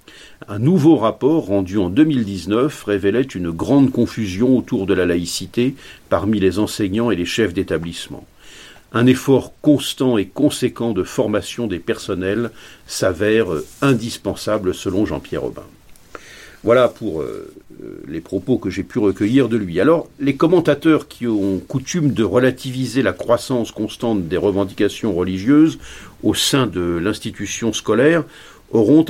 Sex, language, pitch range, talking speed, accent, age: male, French, 105-135 Hz, 135 wpm, French, 50-69